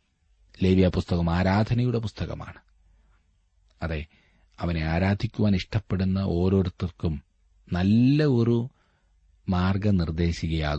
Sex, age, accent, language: male, 30-49, native, Malayalam